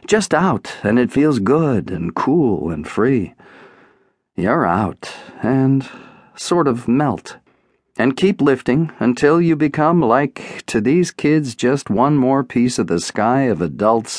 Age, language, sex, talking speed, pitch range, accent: 50-69, English, male, 150 wpm, 115-150 Hz, American